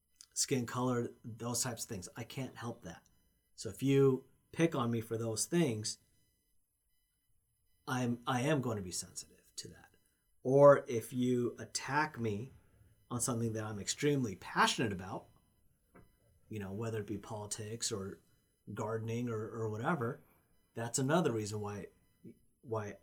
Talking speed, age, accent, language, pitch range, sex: 145 wpm, 40-59, American, English, 105-135 Hz, male